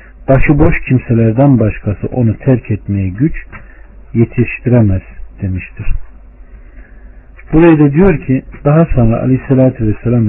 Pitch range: 105-140 Hz